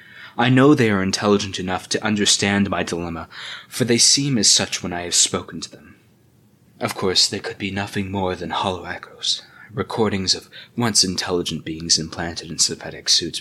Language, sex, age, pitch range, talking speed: English, male, 20-39, 95-130 Hz, 175 wpm